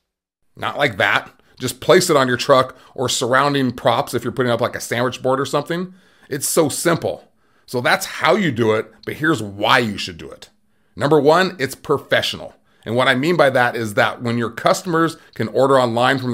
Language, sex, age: English, male, 30-49